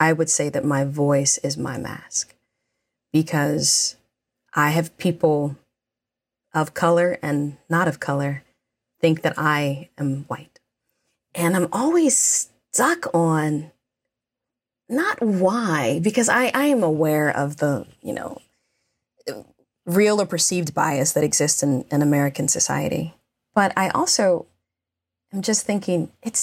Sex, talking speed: female, 130 wpm